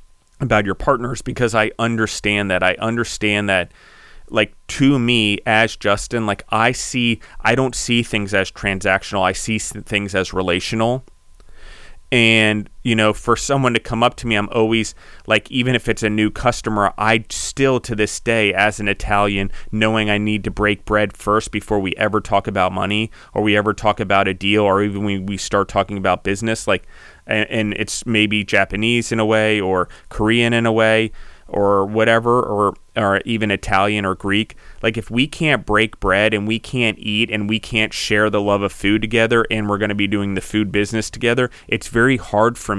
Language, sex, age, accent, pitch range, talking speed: English, male, 30-49, American, 100-115 Hz, 195 wpm